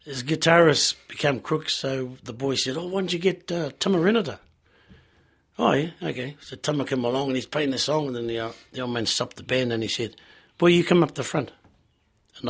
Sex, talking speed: male, 225 wpm